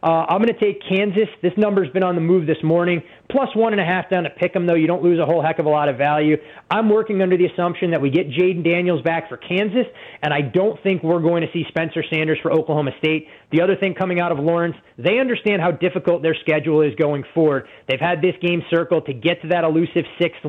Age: 20-39